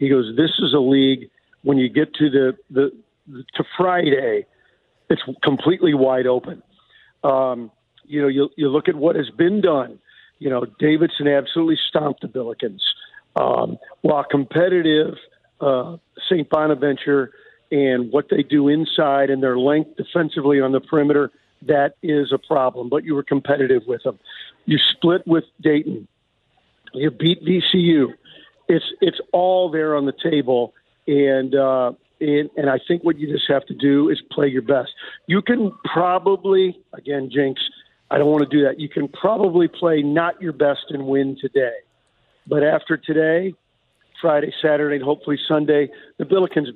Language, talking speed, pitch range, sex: English, 160 wpm, 140-170 Hz, male